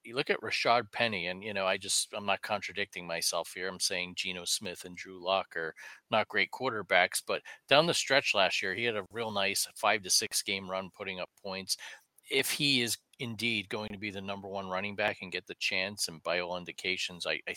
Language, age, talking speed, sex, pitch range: English, 40-59, 230 wpm, male, 95-110 Hz